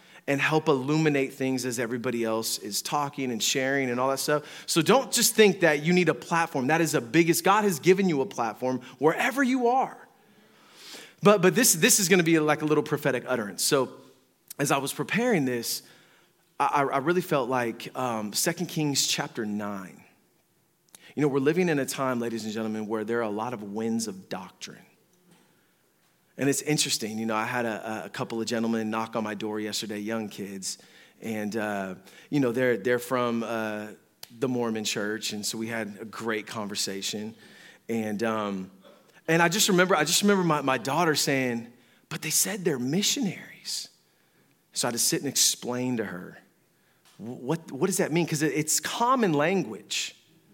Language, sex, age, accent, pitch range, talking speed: English, male, 30-49, American, 115-165 Hz, 190 wpm